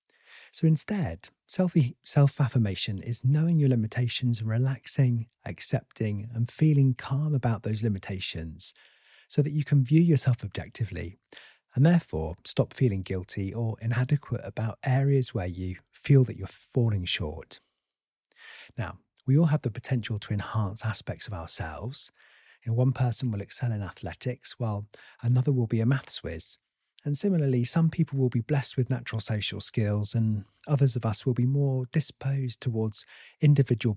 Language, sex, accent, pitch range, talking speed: English, male, British, 110-145 Hz, 150 wpm